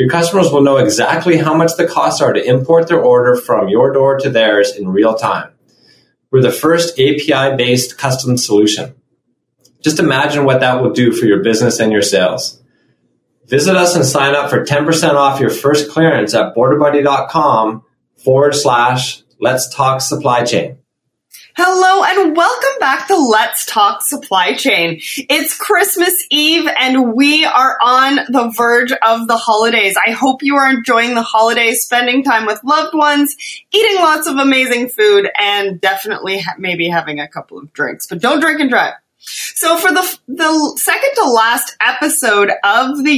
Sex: male